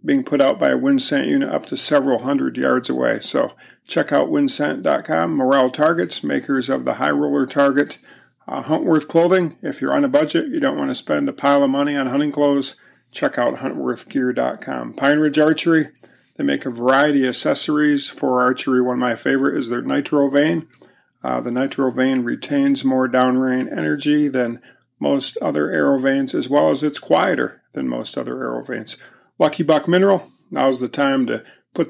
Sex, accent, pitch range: male, American, 130-160 Hz